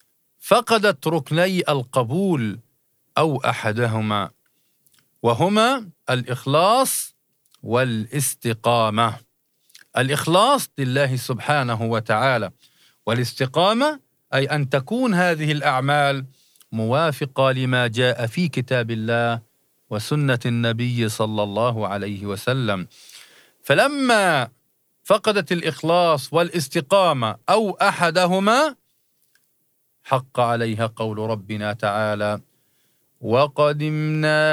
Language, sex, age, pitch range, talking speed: Arabic, male, 50-69, 120-160 Hz, 75 wpm